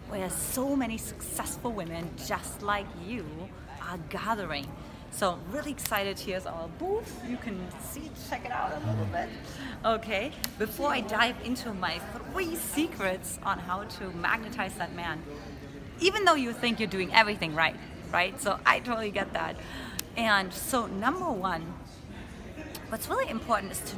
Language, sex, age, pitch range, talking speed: English, female, 30-49, 190-275 Hz, 155 wpm